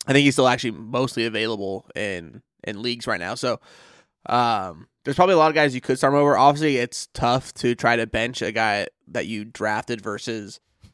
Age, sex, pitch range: 20-39, male, 115-130 Hz